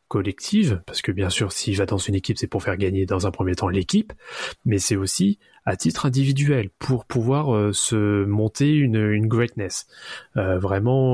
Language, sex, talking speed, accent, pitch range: French, male, 190 wpm, French, 100-130 Hz